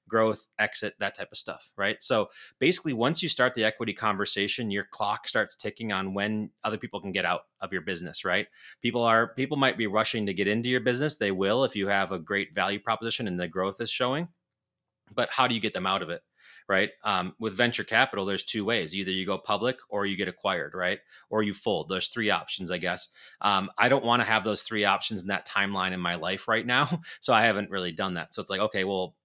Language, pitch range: English, 100-115 Hz